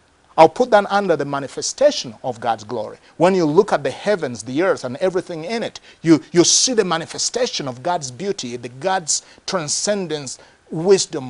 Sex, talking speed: male, 175 wpm